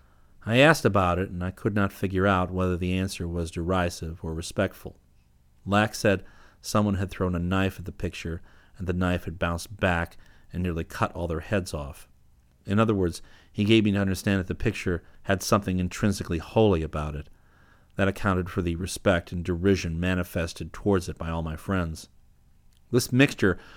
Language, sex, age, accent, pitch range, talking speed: English, male, 40-59, American, 85-100 Hz, 185 wpm